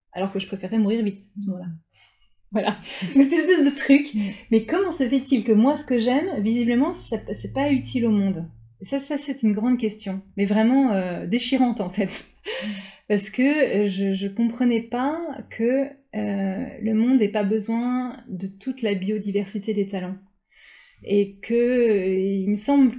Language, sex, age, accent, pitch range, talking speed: French, female, 30-49, French, 200-245 Hz, 165 wpm